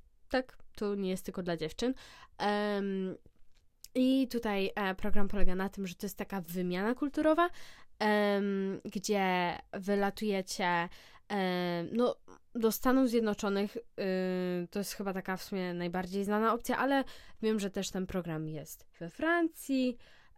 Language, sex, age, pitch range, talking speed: Polish, female, 10-29, 185-215 Hz, 125 wpm